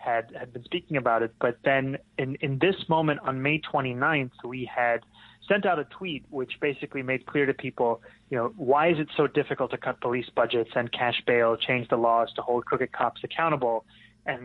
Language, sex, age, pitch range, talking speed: English, male, 30-49, 115-140 Hz, 210 wpm